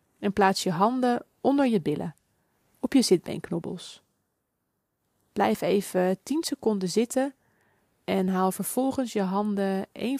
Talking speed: 125 wpm